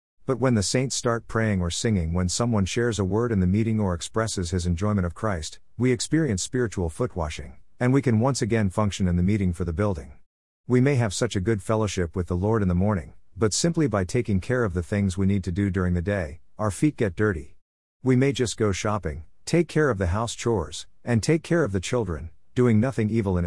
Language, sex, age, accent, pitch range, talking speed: English, male, 50-69, American, 90-115 Hz, 235 wpm